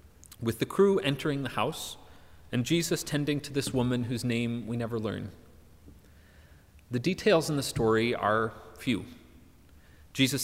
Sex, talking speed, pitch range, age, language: male, 145 wpm, 95-145 Hz, 30-49, English